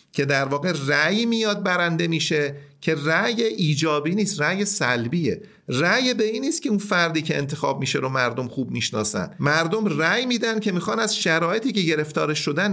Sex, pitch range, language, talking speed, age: male, 145-205 Hz, Persian, 165 wpm, 50-69